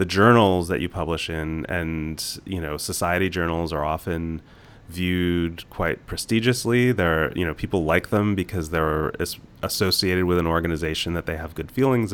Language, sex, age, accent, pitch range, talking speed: English, male, 30-49, American, 80-100 Hz, 170 wpm